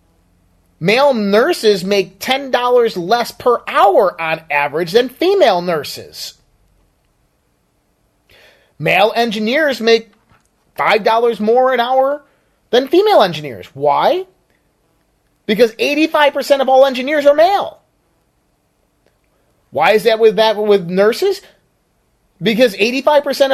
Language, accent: English, American